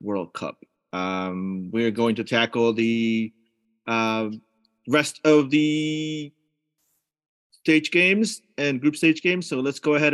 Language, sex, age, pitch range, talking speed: English, male, 30-49, 105-135 Hz, 130 wpm